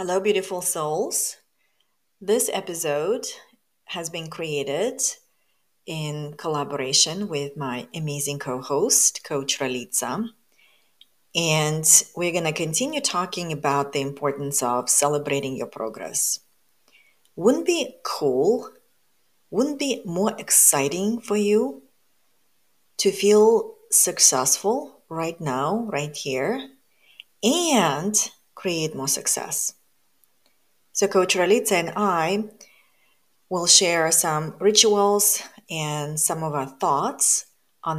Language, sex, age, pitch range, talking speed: English, female, 30-49, 145-205 Hz, 105 wpm